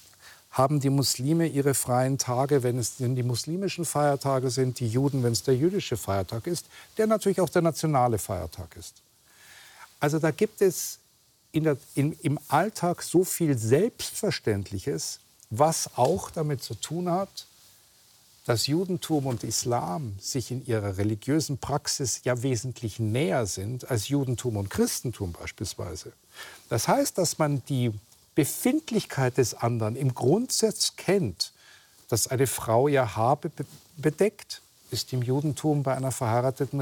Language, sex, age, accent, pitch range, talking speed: German, male, 50-69, German, 120-155 Hz, 135 wpm